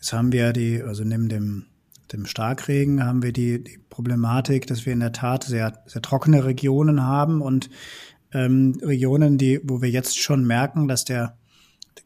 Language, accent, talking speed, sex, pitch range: German, German, 180 wpm, male, 125-140 Hz